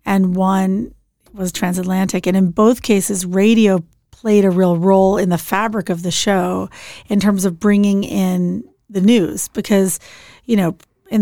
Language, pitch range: English, 180-200 Hz